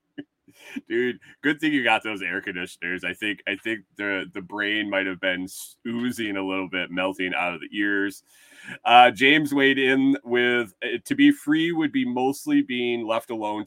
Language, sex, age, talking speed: English, male, 30-49, 180 wpm